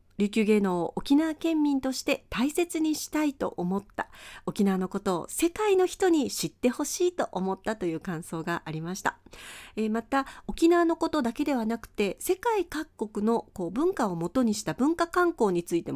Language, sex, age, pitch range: Japanese, female, 40-59, 195-310 Hz